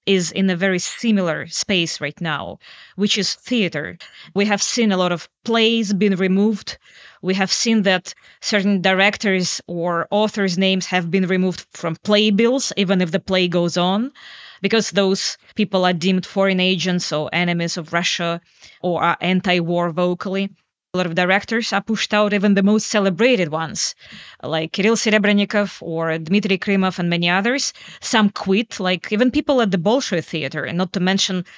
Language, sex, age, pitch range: English, female, 20-39, 180-215 Hz